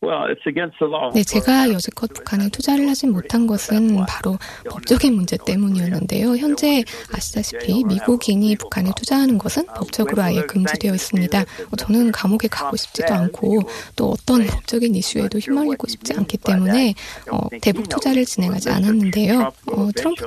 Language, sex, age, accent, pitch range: Korean, female, 20-39, native, 195-235 Hz